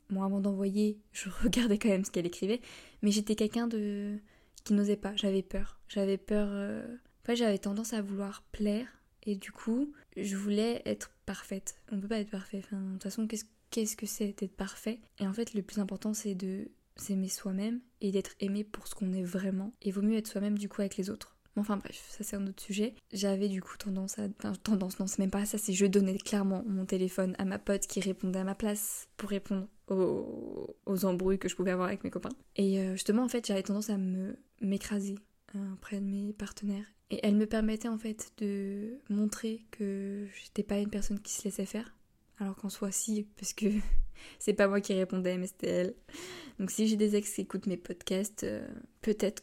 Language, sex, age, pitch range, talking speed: French, female, 20-39, 195-220 Hz, 215 wpm